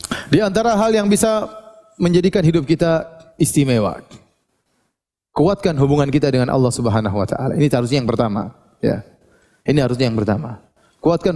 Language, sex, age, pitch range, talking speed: Indonesian, male, 30-49, 135-190 Hz, 145 wpm